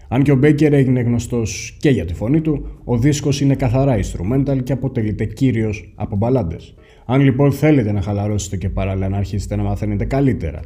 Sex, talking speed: male, 185 wpm